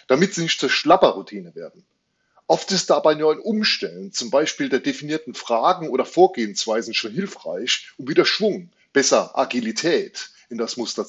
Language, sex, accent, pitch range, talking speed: German, male, German, 130-190 Hz, 155 wpm